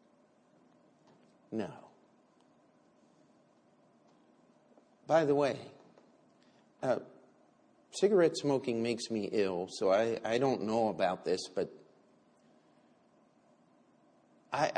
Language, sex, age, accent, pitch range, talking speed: English, male, 60-79, American, 115-165 Hz, 75 wpm